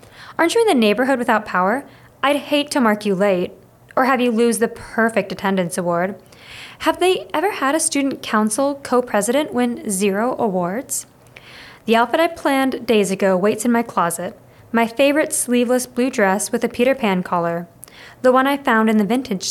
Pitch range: 195-260 Hz